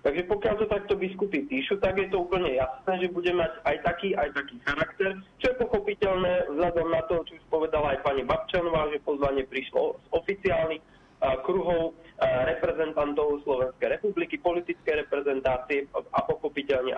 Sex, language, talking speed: male, Slovak, 150 wpm